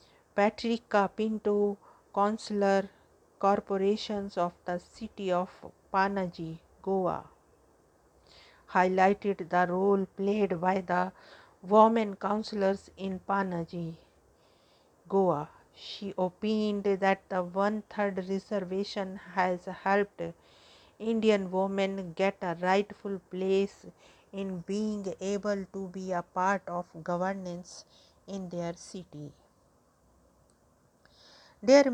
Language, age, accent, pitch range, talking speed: English, 50-69, Indian, 185-205 Hz, 90 wpm